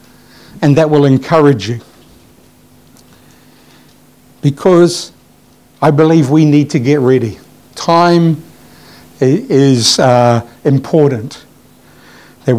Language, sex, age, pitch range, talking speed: English, male, 60-79, 140-170 Hz, 85 wpm